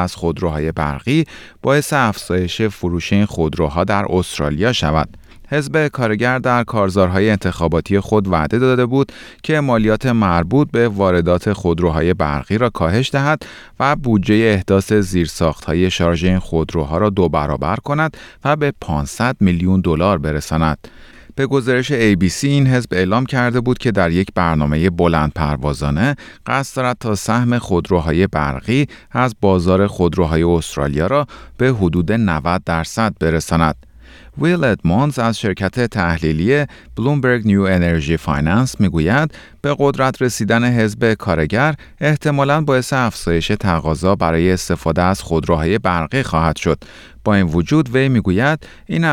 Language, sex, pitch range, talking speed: Persian, male, 80-120 Hz, 130 wpm